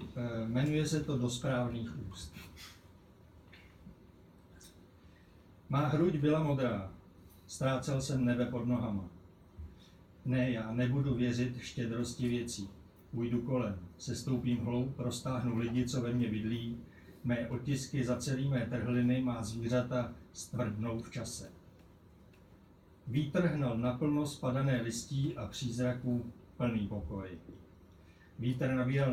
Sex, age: male, 60-79